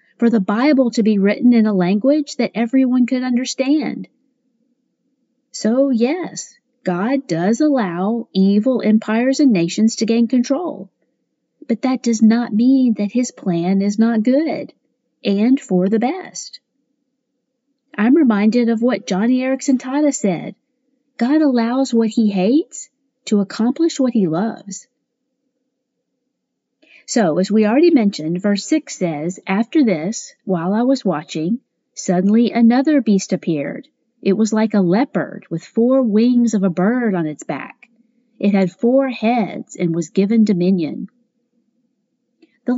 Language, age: English, 40-59